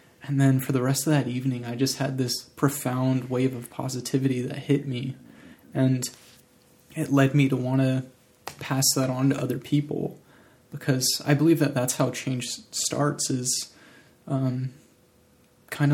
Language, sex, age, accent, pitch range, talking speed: English, male, 20-39, American, 125-140 Hz, 160 wpm